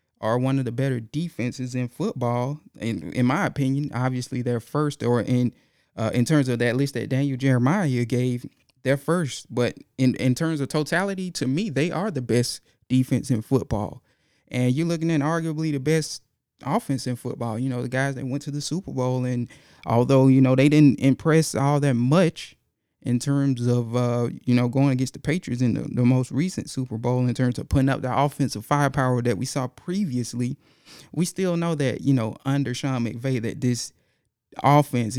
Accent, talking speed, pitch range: American, 195 wpm, 120-140 Hz